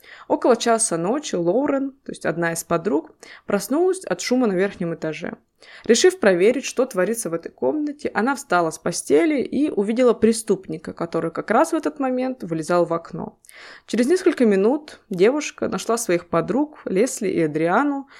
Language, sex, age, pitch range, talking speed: Russian, female, 20-39, 170-235 Hz, 160 wpm